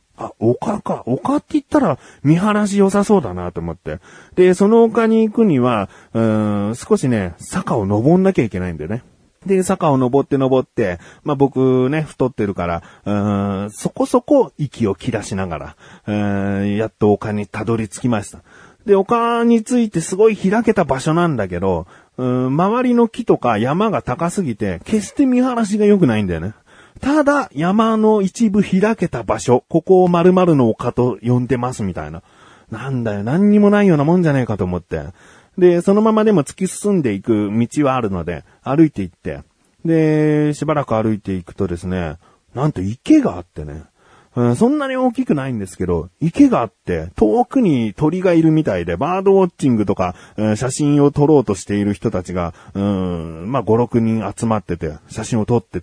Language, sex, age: Japanese, male, 30-49